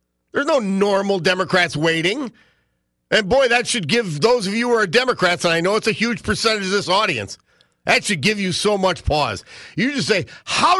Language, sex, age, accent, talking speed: English, male, 50-69, American, 205 wpm